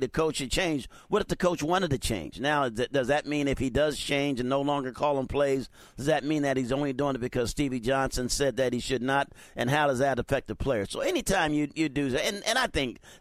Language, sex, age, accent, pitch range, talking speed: English, male, 50-69, American, 125-150 Hz, 265 wpm